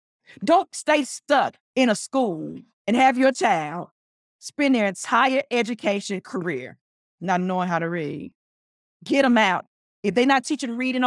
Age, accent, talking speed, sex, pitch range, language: 40-59, American, 150 wpm, female, 190-265 Hz, English